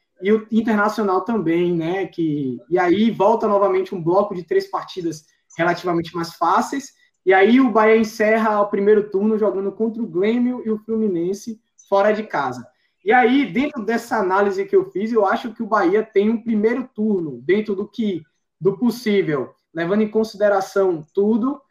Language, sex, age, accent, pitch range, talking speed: Portuguese, male, 20-39, Brazilian, 185-225 Hz, 170 wpm